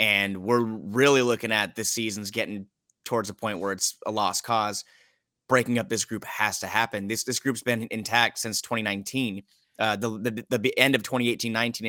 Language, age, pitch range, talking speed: English, 20-39, 105-130 Hz, 185 wpm